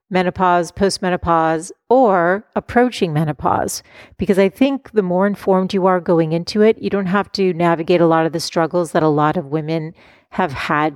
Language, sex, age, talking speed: English, female, 40-59, 180 wpm